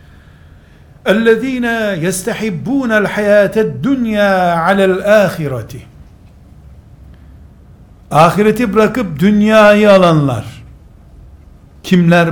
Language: Turkish